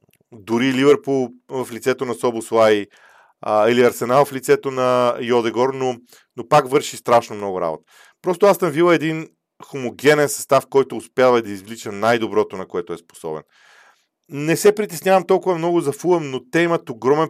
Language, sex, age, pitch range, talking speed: Bulgarian, male, 40-59, 120-155 Hz, 165 wpm